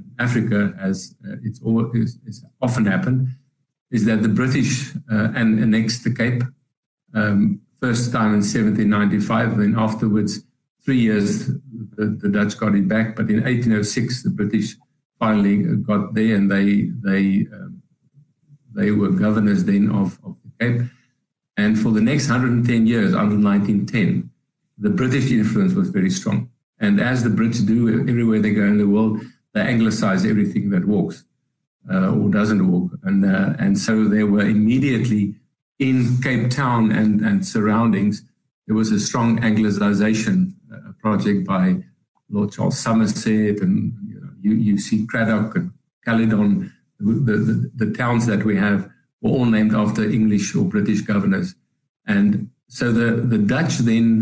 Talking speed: 155 wpm